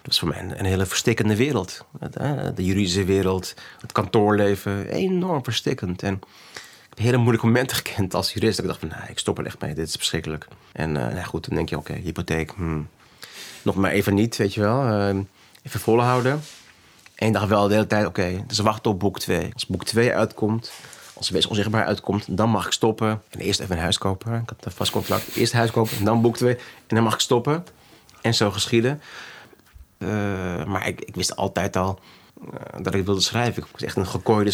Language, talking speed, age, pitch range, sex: Dutch, 220 wpm, 30-49, 95-115 Hz, male